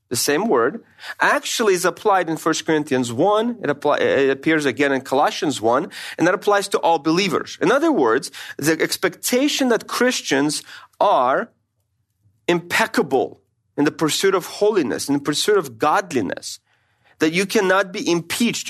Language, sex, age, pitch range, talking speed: English, male, 40-59, 130-215 Hz, 150 wpm